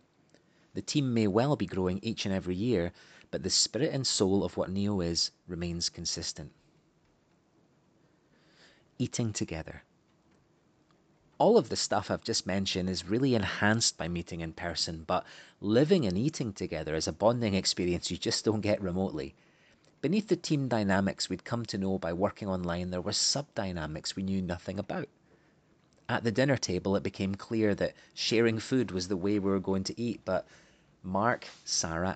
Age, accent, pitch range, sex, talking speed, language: 30-49, British, 90-115 Hz, male, 170 wpm, English